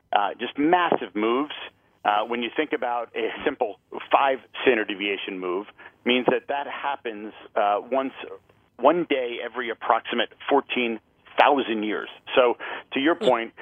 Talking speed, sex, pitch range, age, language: 135 wpm, male, 115-140 Hz, 40-59, English